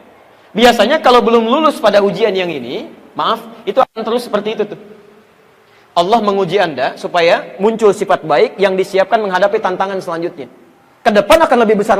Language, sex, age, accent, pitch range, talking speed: Indonesian, male, 30-49, native, 160-225 Hz, 160 wpm